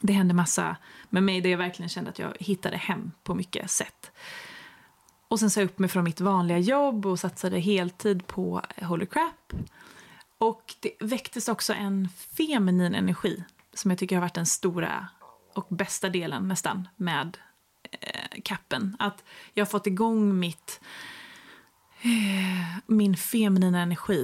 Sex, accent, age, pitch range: female, native, 30-49, 180-220 Hz